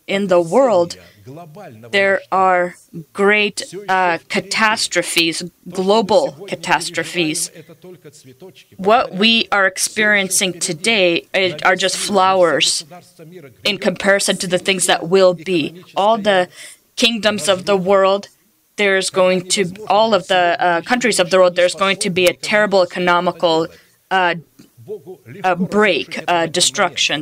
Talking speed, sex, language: 115 wpm, female, English